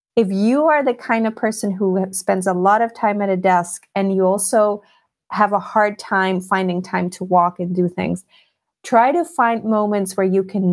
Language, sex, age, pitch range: English, female, 30-49, 190-225 Hz